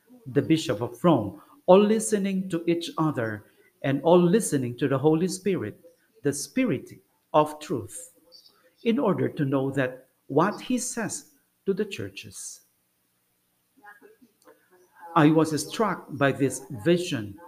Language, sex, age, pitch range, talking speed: English, male, 50-69, 140-205 Hz, 125 wpm